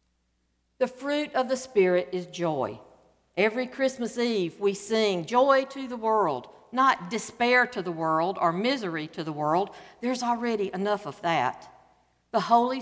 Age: 60-79